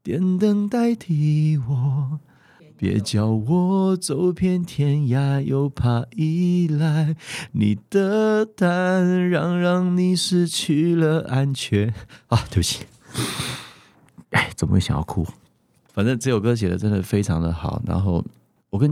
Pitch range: 90-140 Hz